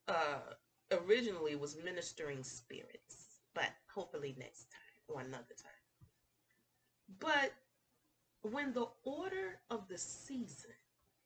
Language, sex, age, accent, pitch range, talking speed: English, female, 30-49, American, 200-305 Hz, 100 wpm